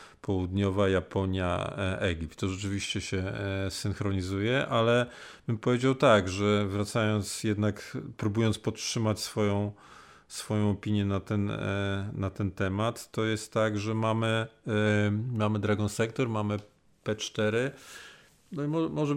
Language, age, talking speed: Polish, 40-59, 120 wpm